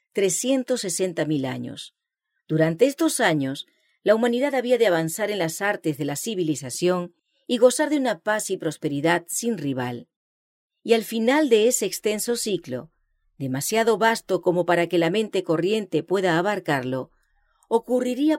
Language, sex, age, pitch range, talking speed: English, female, 40-59, 160-245 Hz, 135 wpm